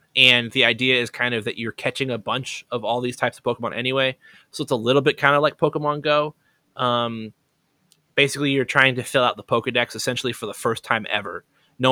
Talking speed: 220 wpm